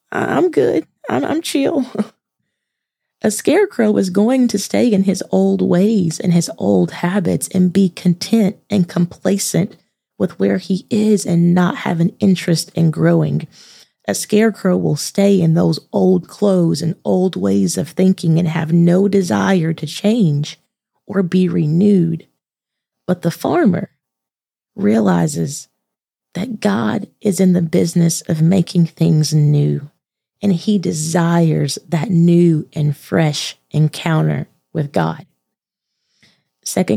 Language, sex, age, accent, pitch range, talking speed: English, female, 20-39, American, 160-195 Hz, 135 wpm